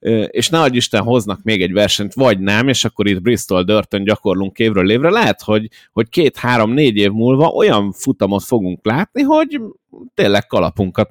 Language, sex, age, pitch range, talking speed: Hungarian, male, 30-49, 100-130 Hz, 160 wpm